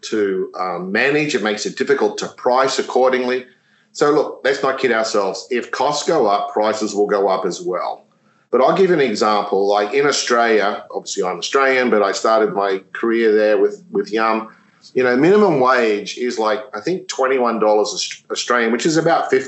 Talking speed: 180 wpm